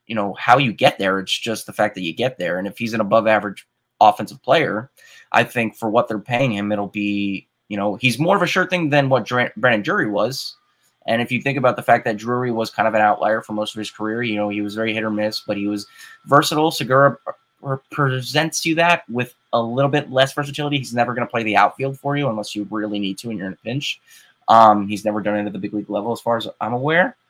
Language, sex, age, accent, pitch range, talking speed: English, male, 20-39, American, 105-130 Hz, 265 wpm